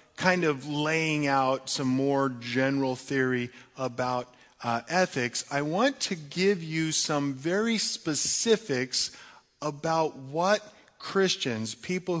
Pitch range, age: 130-160 Hz, 40-59